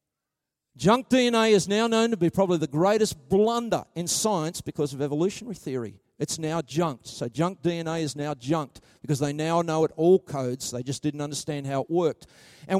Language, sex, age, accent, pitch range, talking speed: English, male, 50-69, Australian, 165-230 Hz, 190 wpm